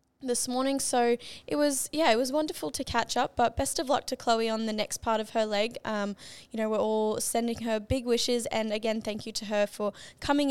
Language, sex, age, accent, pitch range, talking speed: English, female, 10-29, Australian, 215-250 Hz, 240 wpm